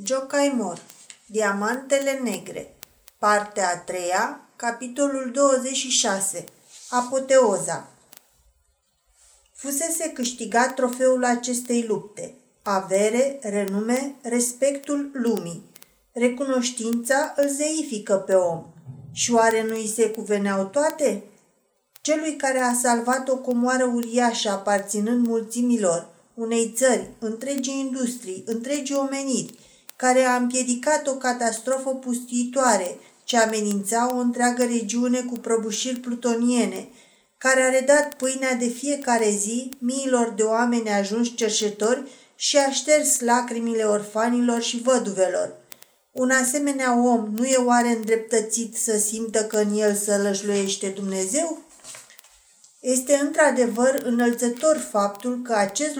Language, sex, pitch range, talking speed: Romanian, female, 215-260 Hz, 105 wpm